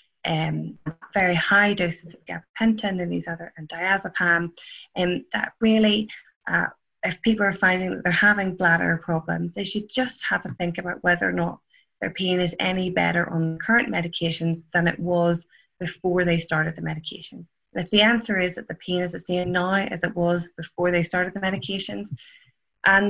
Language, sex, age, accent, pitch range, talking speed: English, female, 20-39, Irish, 165-190 Hz, 185 wpm